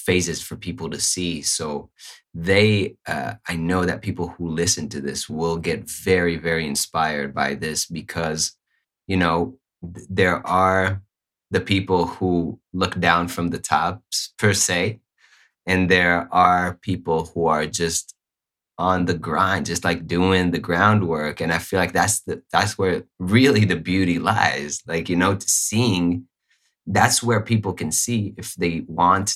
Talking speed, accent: 160 wpm, American